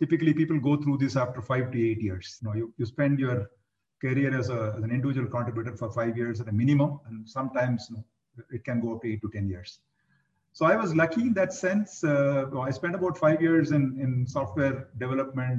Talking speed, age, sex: 225 wpm, 50-69, male